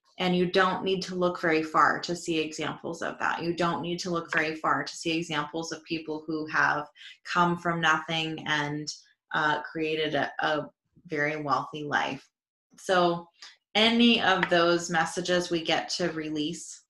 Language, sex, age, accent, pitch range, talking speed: English, female, 20-39, American, 160-185 Hz, 165 wpm